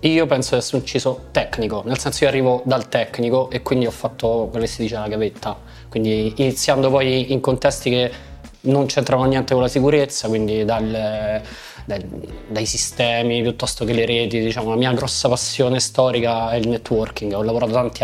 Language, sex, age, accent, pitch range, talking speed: Italian, male, 20-39, native, 115-145 Hz, 185 wpm